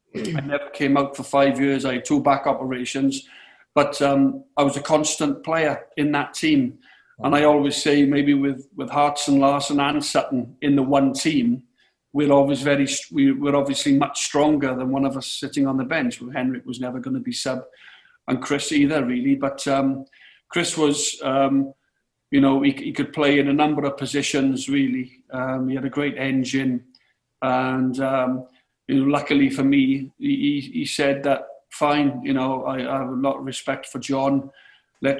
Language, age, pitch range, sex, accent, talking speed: English, 50-69, 135-145 Hz, male, British, 190 wpm